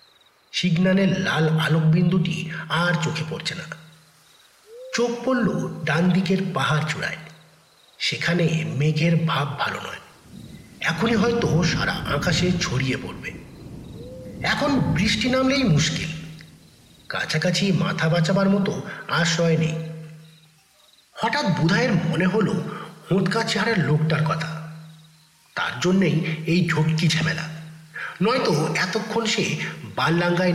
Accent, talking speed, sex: native, 65 wpm, male